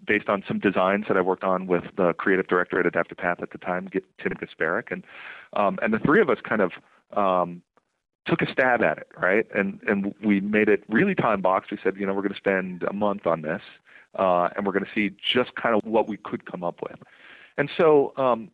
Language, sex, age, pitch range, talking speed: English, male, 40-59, 90-115 Hz, 235 wpm